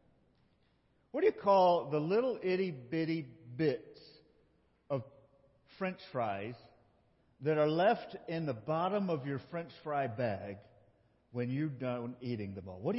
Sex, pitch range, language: male, 115-160 Hz, English